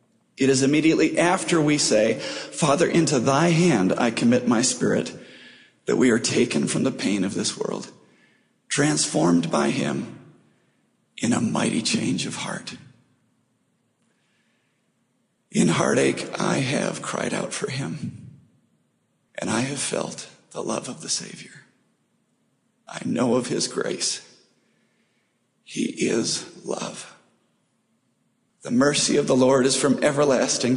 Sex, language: male, English